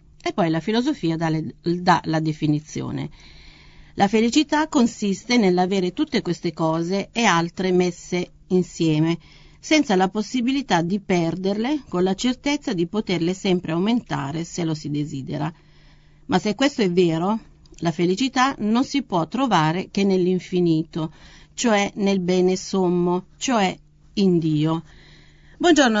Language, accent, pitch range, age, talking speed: Italian, native, 170-210 Hz, 40-59, 125 wpm